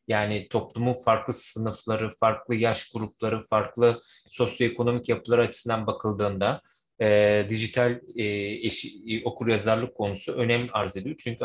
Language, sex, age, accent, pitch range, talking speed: Turkish, male, 30-49, native, 105-120 Hz, 115 wpm